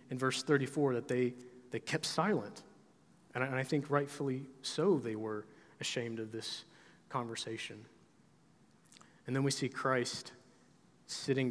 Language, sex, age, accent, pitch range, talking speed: English, male, 30-49, American, 120-140 Hz, 135 wpm